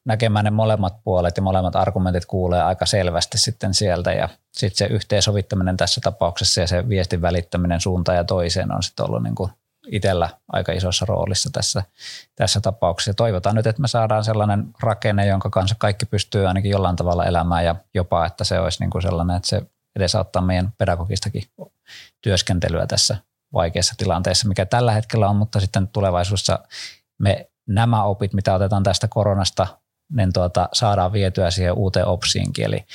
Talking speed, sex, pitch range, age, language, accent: 165 wpm, male, 90-110 Hz, 20-39, Finnish, native